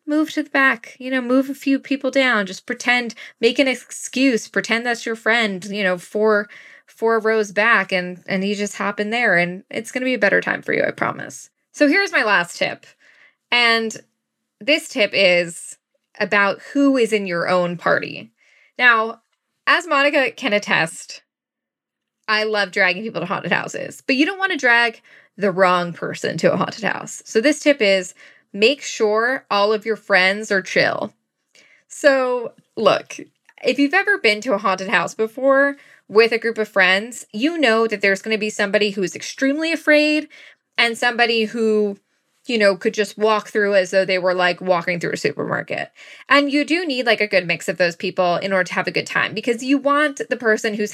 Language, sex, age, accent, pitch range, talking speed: English, female, 10-29, American, 200-265 Hz, 195 wpm